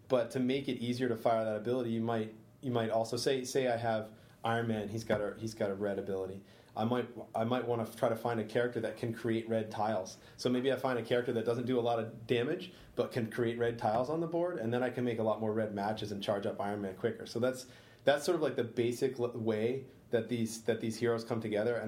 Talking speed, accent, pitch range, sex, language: 270 wpm, American, 105-120 Hz, male, English